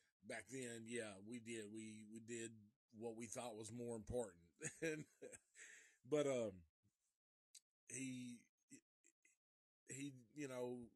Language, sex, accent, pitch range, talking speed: English, male, American, 110-130 Hz, 110 wpm